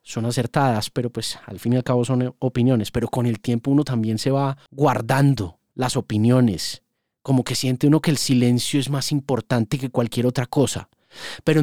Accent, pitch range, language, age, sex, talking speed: Colombian, 135-175 Hz, Spanish, 30-49, male, 190 wpm